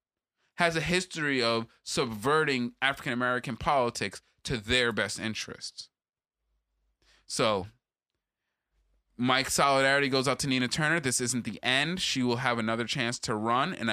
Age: 20-39